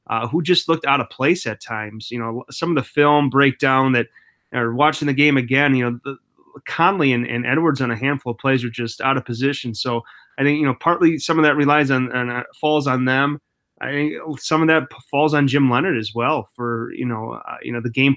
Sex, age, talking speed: male, 30-49, 250 wpm